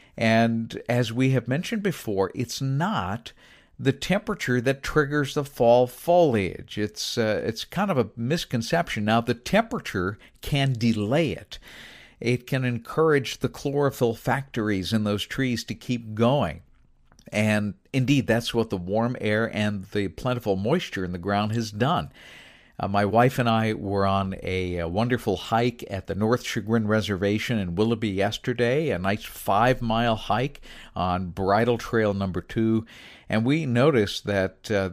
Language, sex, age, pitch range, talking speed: English, male, 50-69, 105-130 Hz, 155 wpm